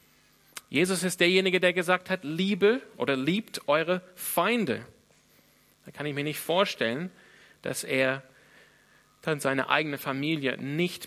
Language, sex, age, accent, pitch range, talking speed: German, male, 40-59, German, 135-185 Hz, 130 wpm